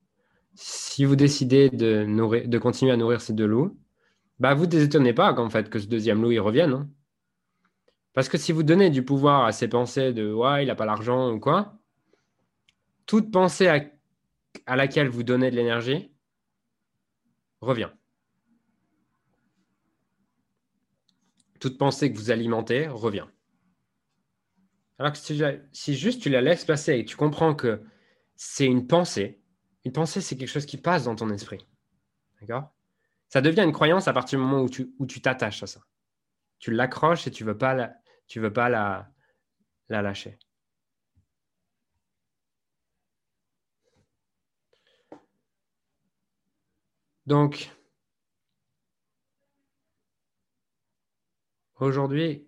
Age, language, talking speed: 20-39, French, 135 wpm